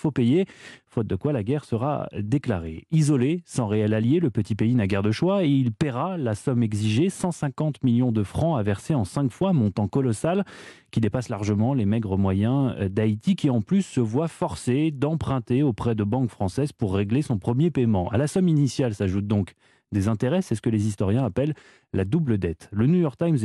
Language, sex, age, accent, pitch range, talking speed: French, male, 30-49, French, 110-150 Hz, 205 wpm